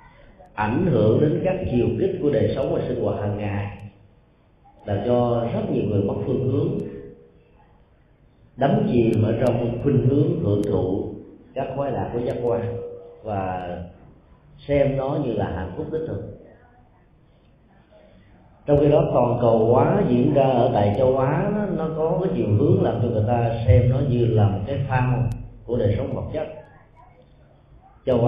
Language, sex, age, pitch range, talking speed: Vietnamese, male, 30-49, 100-130 Hz, 170 wpm